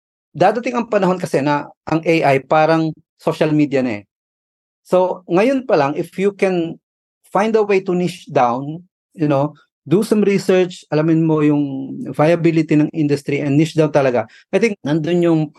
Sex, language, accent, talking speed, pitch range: male, Filipino, native, 170 wpm, 135-175 Hz